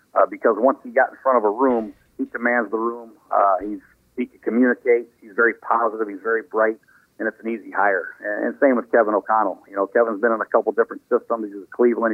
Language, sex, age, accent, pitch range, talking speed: English, male, 50-69, American, 115-130 Hz, 235 wpm